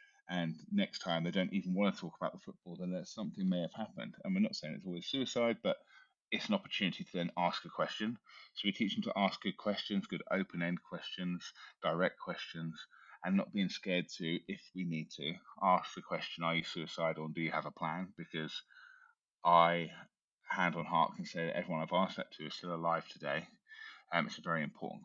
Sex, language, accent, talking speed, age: male, English, British, 215 wpm, 20-39